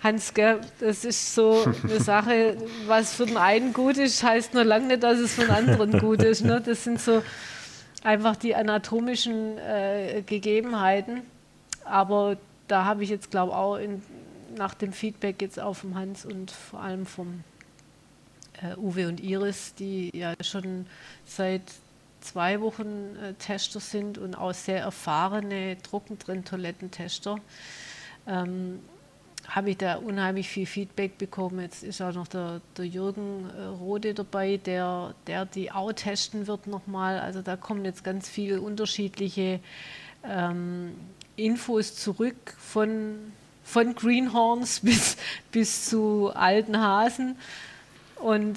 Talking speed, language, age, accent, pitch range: 140 wpm, German, 40-59, German, 180-215 Hz